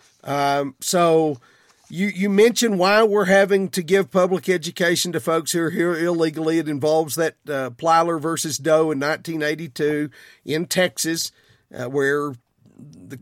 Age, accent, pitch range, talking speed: 50-69, American, 160-205 Hz, 145 wpm